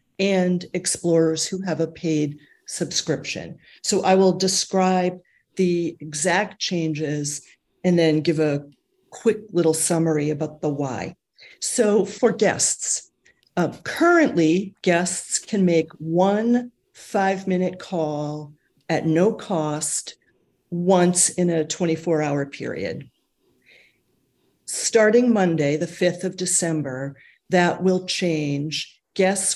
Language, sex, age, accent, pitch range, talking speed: English, female, 50-69, American, 160-195 Hz, 110 wpm